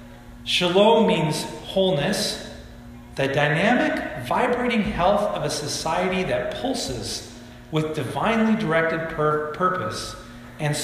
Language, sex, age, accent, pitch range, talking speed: English, male, 40-59, American, 120-155 Hz, 95 wpm